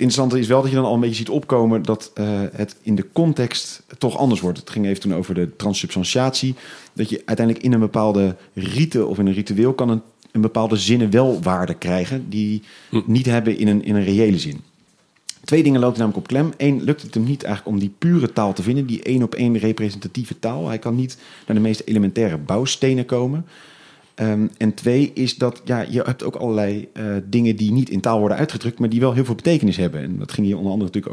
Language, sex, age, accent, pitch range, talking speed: Dutch, male, 40-59, Dutch, 100-125 Hz, 225 wpm